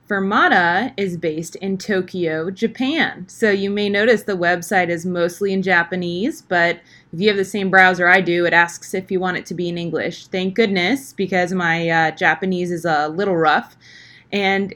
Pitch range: 175-210 Hz